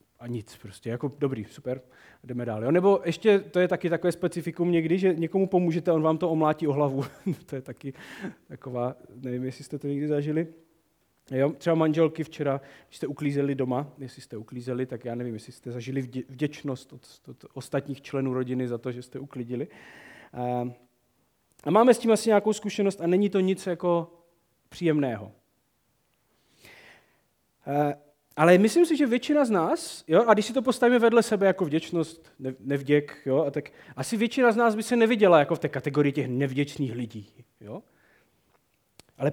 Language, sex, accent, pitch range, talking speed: Czech, male, native, 130-170 Hz, 175 wpm